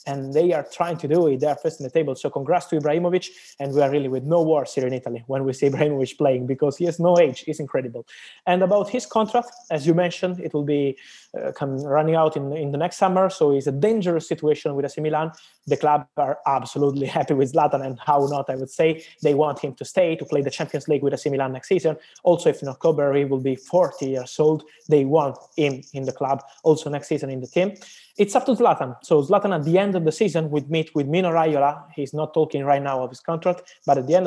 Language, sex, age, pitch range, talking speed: English, male, 20-39, 135-170 Hz, 255 wpm